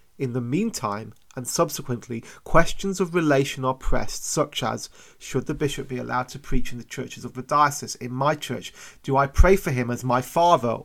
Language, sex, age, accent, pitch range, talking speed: English, male, 30-49, British, 125-155 Hz, 200 wpm